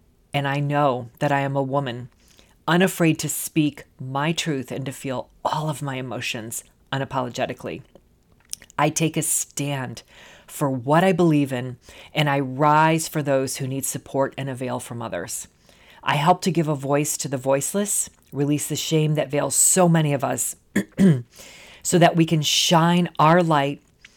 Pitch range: 135-155 Hz